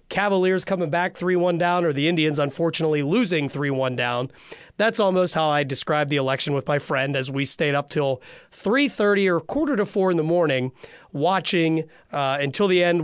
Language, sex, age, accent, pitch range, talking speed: English, male, 30-49, American, 150-195 Hz, 185 wpm